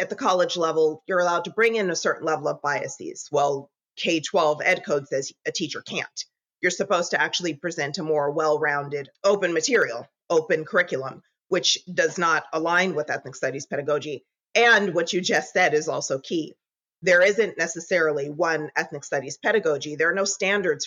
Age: 30-49